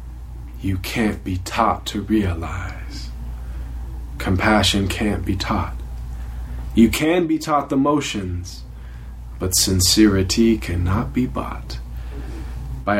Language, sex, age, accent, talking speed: English, male, 20-39, American, 100 wpm